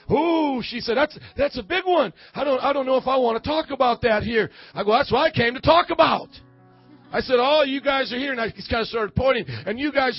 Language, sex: English, male